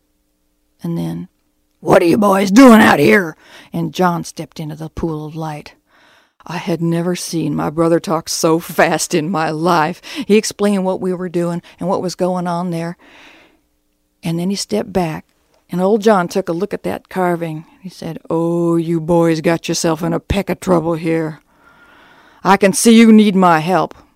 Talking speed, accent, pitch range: 185 wpm, American, 160-200 Hz